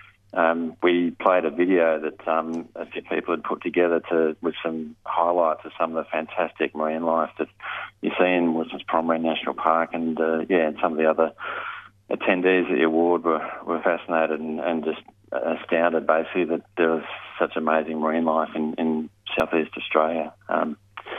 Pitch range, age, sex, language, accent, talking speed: 80-85 Hz, 40-59, male, English, Australian, 180 wpm